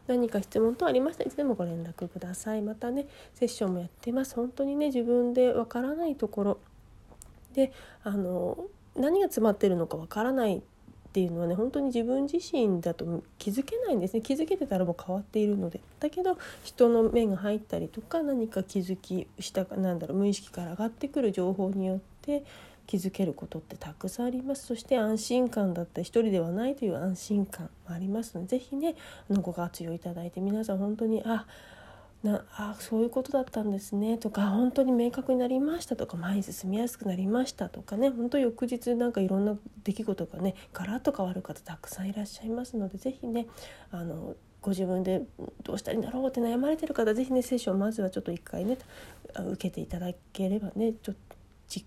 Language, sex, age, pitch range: Japanese, female, 40-59, 190-250 Hz